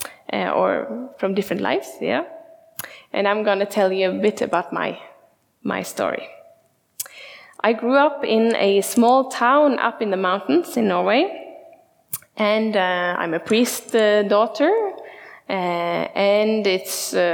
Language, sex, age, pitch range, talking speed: English, female, 10-29, 205-290 Hz, 145 wpm